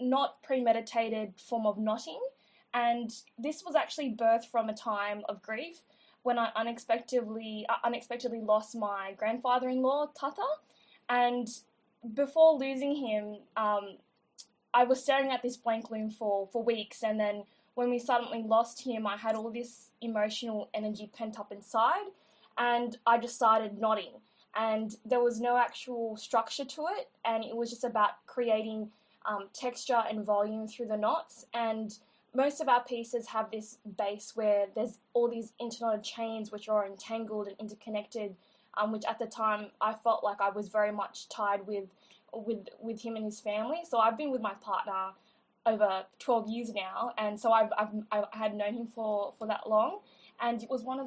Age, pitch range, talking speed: 10-29, 215-245 Hz, 175 wpm